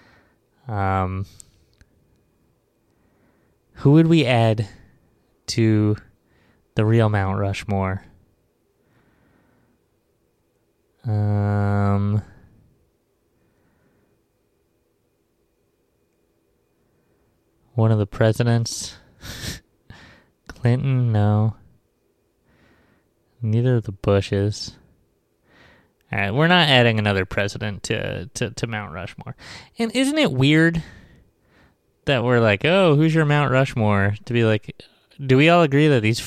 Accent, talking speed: American, 90 wpm